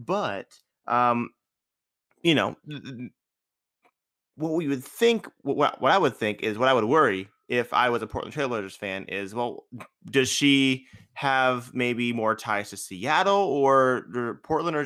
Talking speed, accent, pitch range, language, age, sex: 160 wpm, American, 115-150 Hz, English, 30-49, male